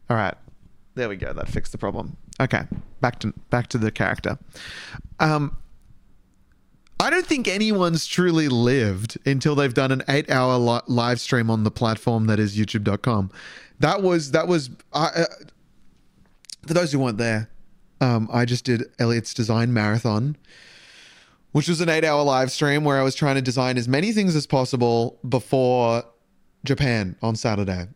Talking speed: 165 wpm